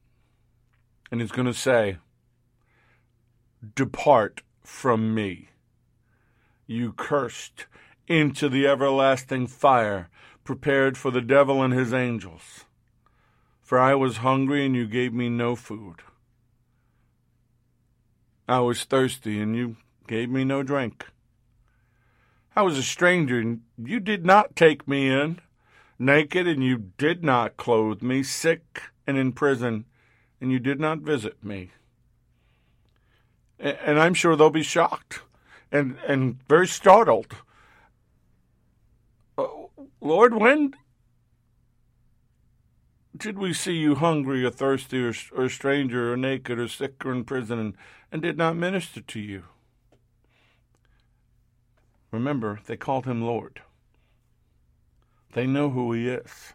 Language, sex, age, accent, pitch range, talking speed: English, male, 50-69, American, 115-140 Hz, 120 wpm